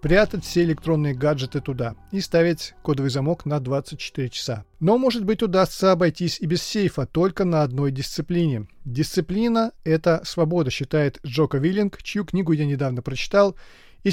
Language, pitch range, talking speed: Russian, 145-185 Hz, 155 wpm